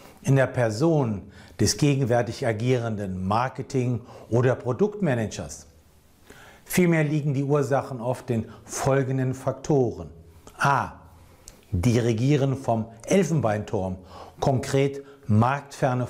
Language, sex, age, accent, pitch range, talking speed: German, male, 60-79, German, 105-140 Hz, 90 wpm